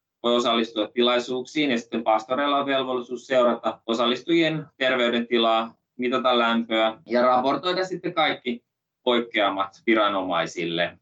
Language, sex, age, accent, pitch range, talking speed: Finnish, male, 20-39, native, 115-140 Hz, 100 wpm